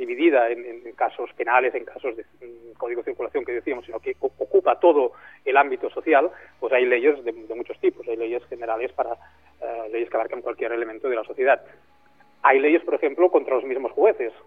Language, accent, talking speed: Spanish, Spanish, 200 wpm